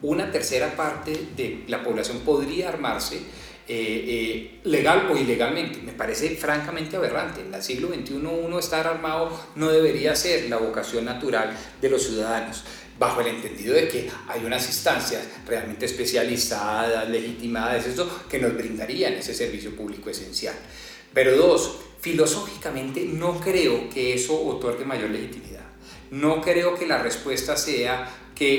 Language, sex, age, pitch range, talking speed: Spanish, male, 40-59, 120-160 Hz, 145 wpm